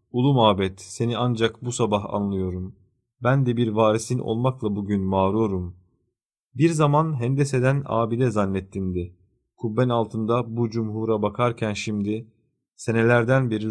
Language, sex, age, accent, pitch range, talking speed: Turkish, male, 40-59, native, 105-120 Hz, 125 wpm